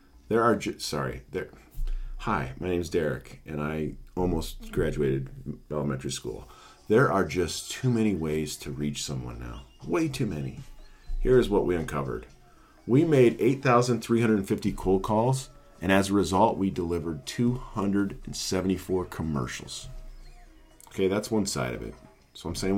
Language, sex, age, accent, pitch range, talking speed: English, male, 40-59, American, 75-110 Hz, 140 wpm